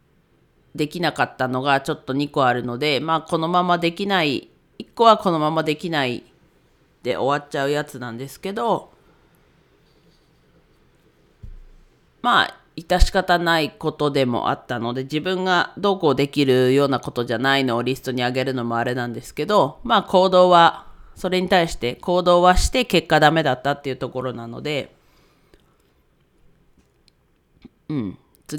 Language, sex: Japanese, female